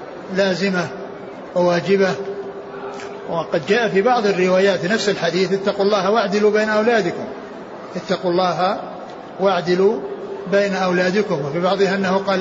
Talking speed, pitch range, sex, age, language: 115 wpm, 180-200 Hz, male, 60-79, Arabic